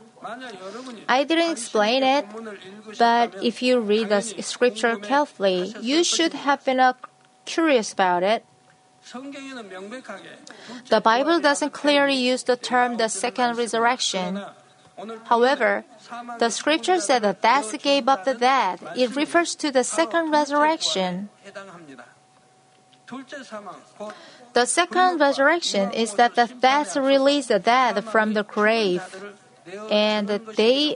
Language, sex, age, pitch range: Korean, female, 30-49, 210-270 Hz